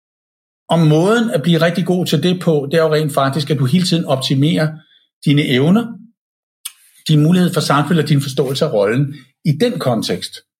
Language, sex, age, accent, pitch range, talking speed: Danish, male, 60-79, native, 135-175 Hz, 180 wpm